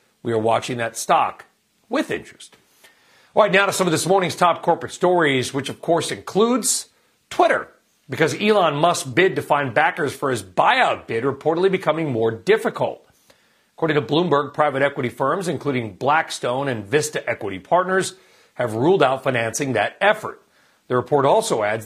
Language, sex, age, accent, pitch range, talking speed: English, male, 40-59, American, 125-175 Hz, 165 wpm